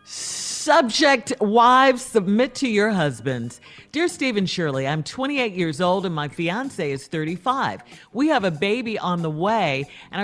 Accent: American